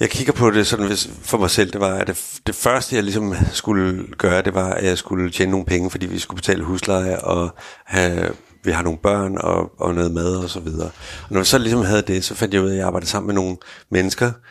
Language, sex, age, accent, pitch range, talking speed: Danish, male, 60-79, native, 90-100 Hz, 250 wpm